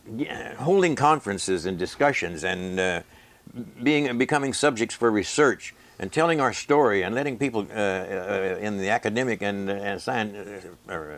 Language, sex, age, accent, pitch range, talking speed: English, male, 60-79, American, 95-125 Hz, 150 wpm